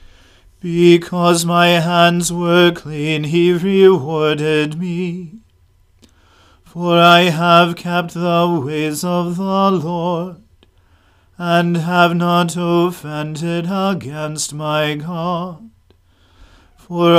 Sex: male